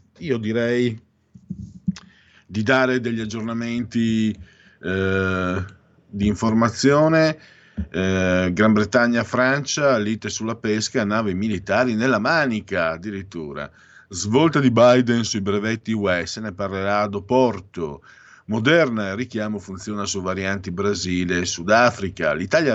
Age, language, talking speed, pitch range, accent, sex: 50-69, Italian, 110 wpm, 90-115 Hz, native, male